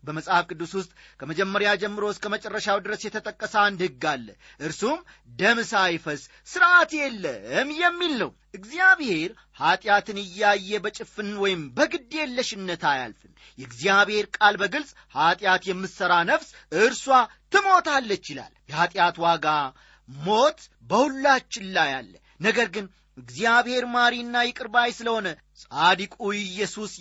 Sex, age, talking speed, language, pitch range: male, 40-59, 110 wpm, Amharic, 180-255 Hz